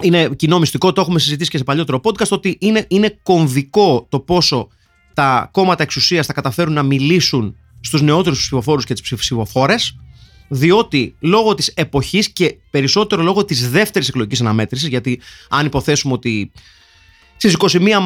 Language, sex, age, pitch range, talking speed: Greek, male, 30-49, 130-200 Hz, 155 wpm